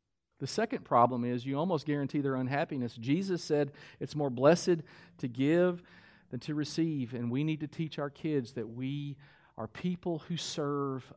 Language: English